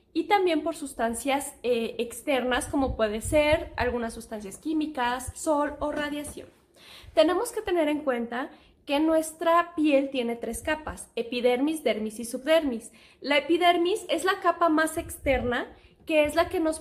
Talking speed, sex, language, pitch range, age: 150 wpm, female, Spanish, 245-310 Hz, 10-29